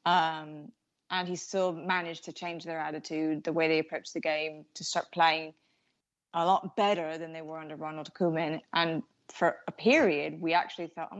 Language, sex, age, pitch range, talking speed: English, female, 30-49, 165-215 Hz, 190 wpm